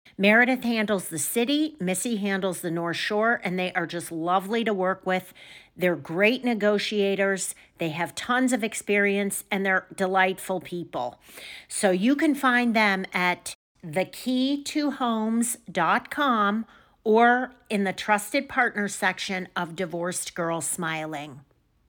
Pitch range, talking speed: 185-240 Hz, 125 wpm